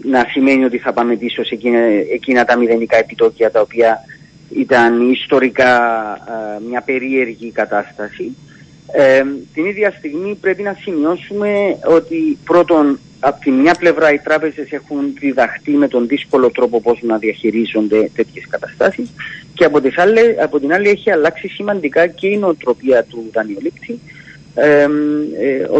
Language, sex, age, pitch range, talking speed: Greek, male, 40-59, 120-170 Hz, 135 wpm